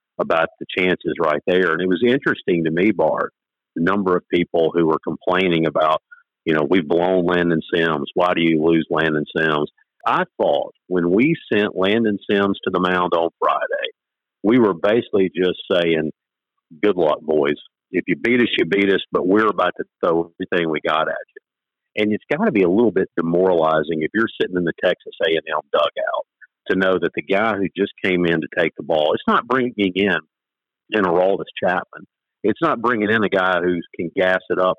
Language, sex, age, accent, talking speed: English, male, 50-69, American, 200 wpm